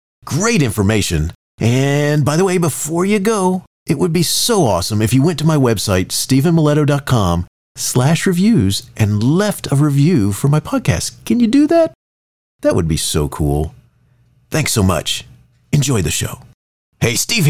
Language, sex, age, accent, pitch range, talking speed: English, male, 40-59, American, 125-205 Hz, 160 wpm